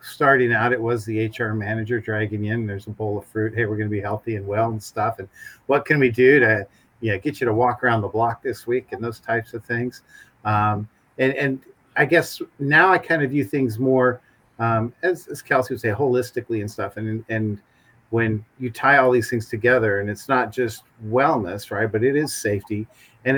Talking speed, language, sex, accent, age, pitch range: 225 wpm, English, male, American, 50-69, 110-130 Hz